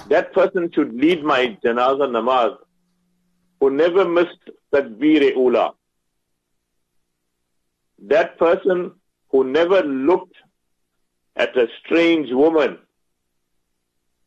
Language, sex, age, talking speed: English, male, 50-69, 90 wpm